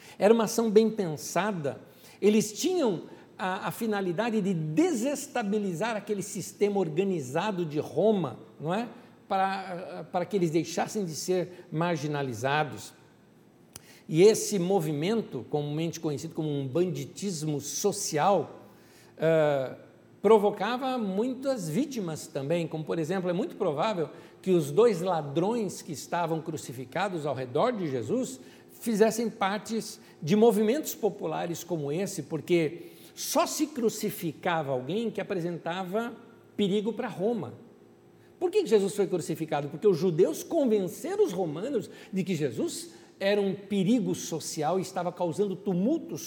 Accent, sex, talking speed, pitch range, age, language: Brazilian, male, 125 wpm, 160-215 Hz, 60-79, Portuguese